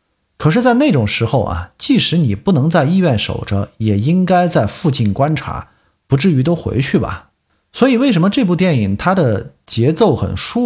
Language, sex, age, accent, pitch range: Chinese, male, 50-69, native, 105-170 Hz